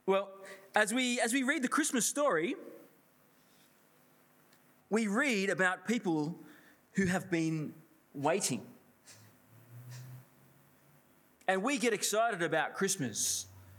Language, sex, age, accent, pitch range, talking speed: English, male, 20-39, Australian, 140-195 Hz, 100 wpm